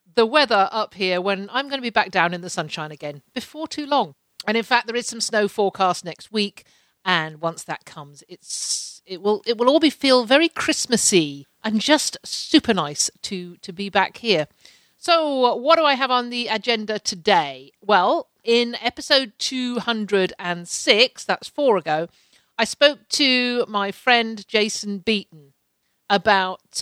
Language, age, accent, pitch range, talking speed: English, 50-69, British, 185-240 Hz, 170 wpm